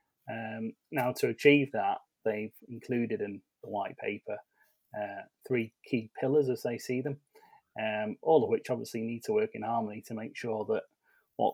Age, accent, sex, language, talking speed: 30-49, British, male, English, 175 wpm